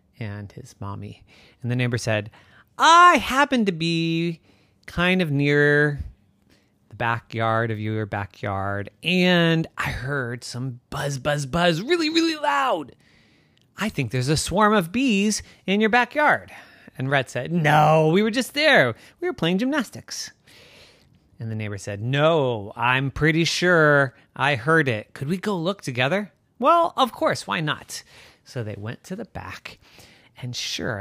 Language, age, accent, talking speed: English, 30-49, American, 155 wpm